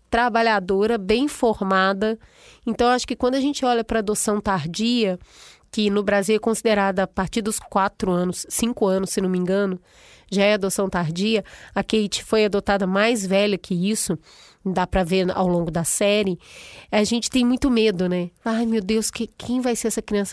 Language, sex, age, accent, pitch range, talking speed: Portuguese, female, 30-49, Brazilian, 195-235 Hz, 185 wpm